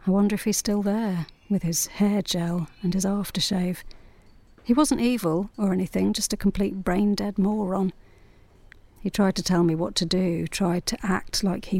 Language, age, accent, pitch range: English, 40-59, British, 165-200 Hz